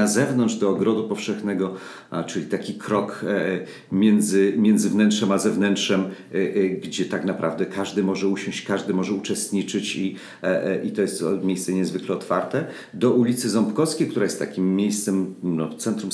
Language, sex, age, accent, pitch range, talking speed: Polish, male, 50-69, native, 100-120 Hz, 140 wpm